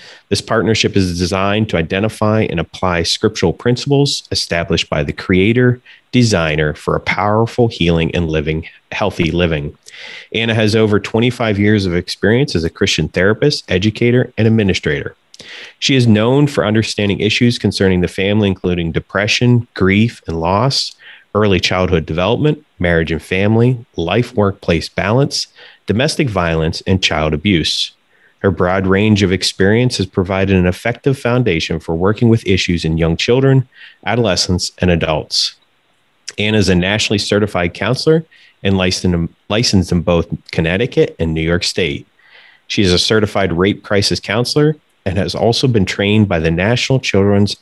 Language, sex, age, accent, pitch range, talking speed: English, male, 30-49, American, 90-115 Hz, 145 wpm